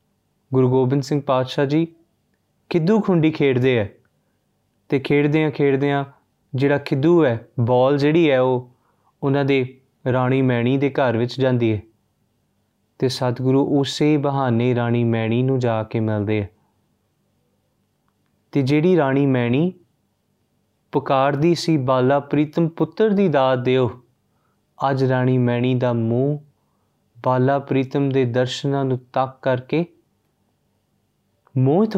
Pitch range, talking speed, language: 125-150 Hz, 125 wpm, Punjabi